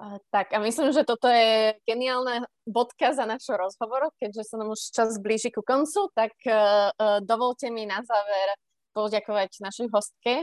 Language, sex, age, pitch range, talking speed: Slovak, female, 20-39, 195-240 Hz, 155 wpm